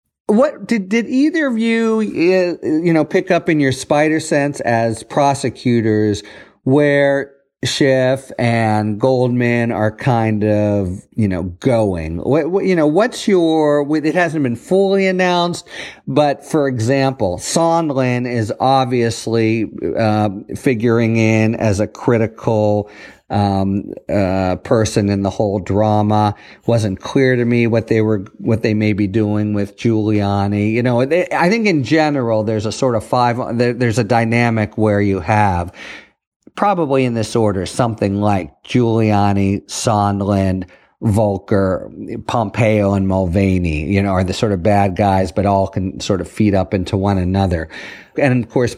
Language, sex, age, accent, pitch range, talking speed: English, male, 50-69, American, 105-155 Hz, 150 wpm